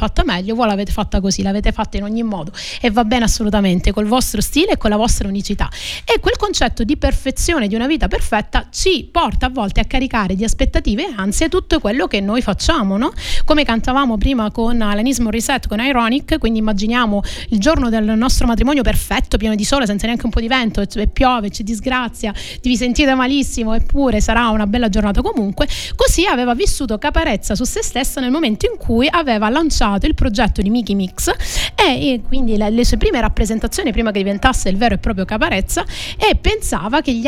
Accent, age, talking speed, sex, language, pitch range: native, 30-49, 195 wpm, female, Italian, 210-260 Hz